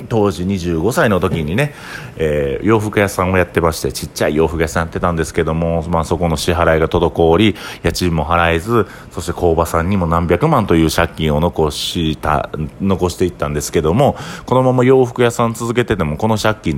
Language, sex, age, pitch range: Japanese, male, 40-59, 75-95 Hz